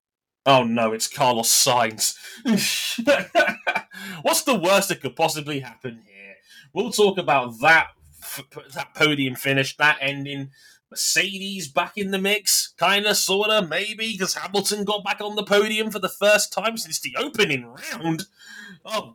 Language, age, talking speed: English, 20-39, 155 wpm